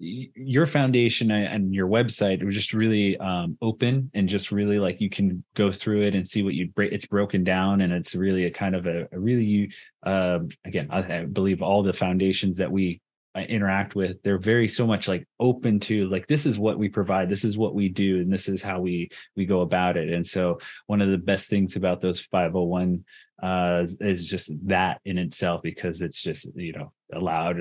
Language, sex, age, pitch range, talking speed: English, male, 20-39, 95-115 Hz, 215 wpm